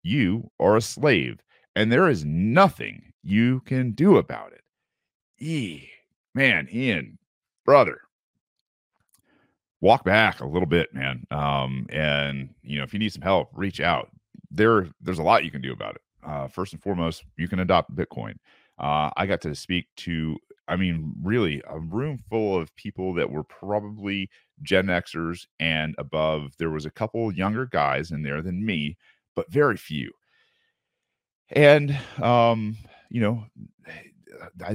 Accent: American